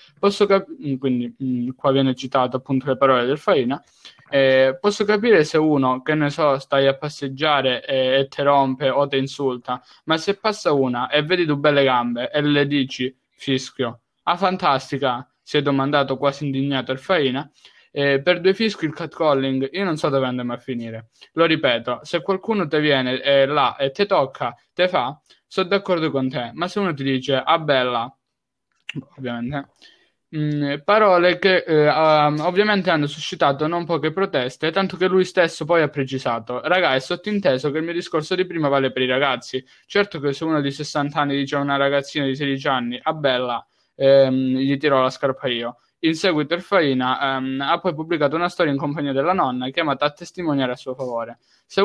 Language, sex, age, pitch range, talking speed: Italian, male, 10-29, 130-165 Hz, 185 wpm